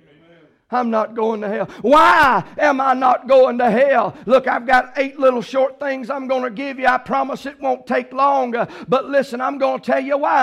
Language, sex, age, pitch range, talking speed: English, male, 50-69, 255-295 Hz, 220 wpm